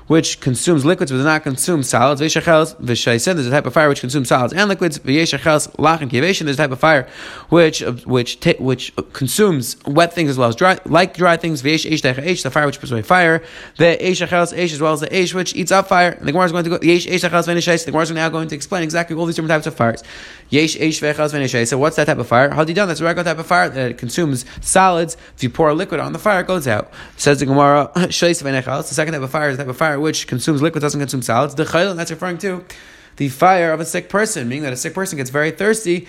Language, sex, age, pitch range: English, male, 30-49, 140-170 Hz